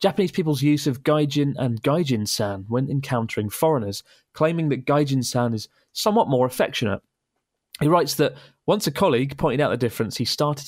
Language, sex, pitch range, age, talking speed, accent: English, male, 120-150 Hz, 30-49, 165 wpm, British